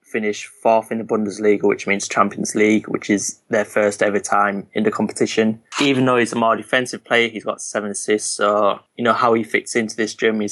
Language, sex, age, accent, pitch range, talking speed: English, male, 20-39, British, 105-115 Hz, 215 wpm